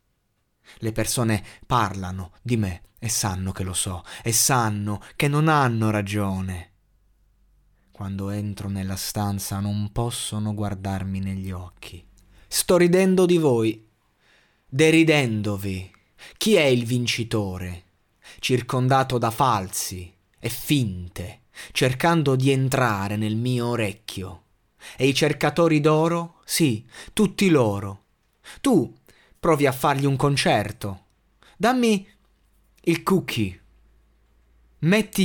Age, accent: 20-39, native